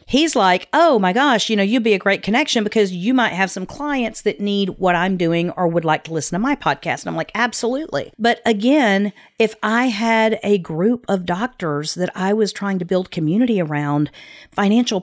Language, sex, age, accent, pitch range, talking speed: English, female, 40-59, American, 175-230 Hz, 210 wpm